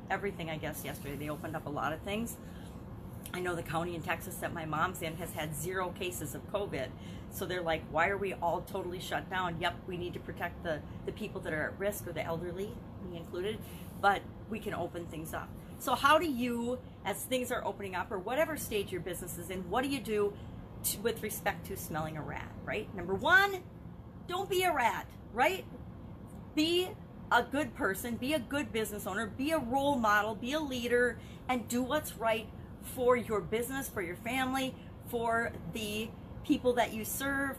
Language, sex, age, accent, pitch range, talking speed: English, female, 40-59, American, 185-260 Hz, 200 wpm